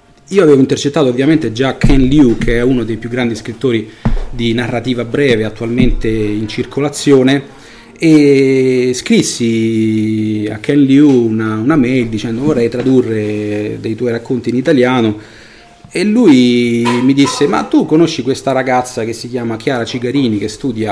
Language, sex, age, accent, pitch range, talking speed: Italian, male, 30-49, native, 115-135 Hz, 150 wpm